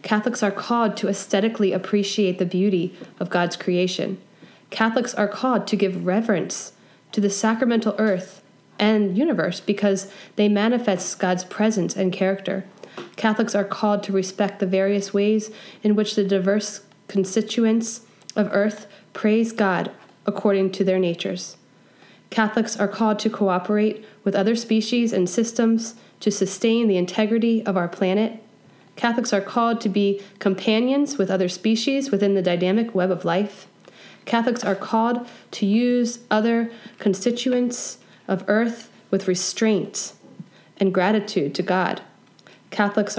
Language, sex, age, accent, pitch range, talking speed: English, female, 20-39, American, 195-225 Hz, 140 wpm